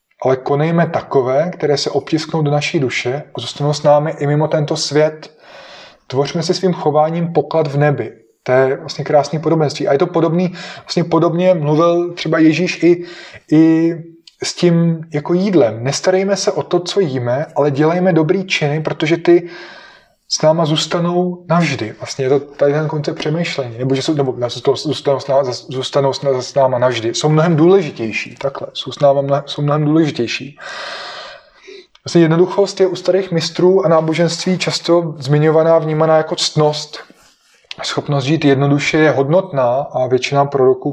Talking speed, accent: 160 wpm, native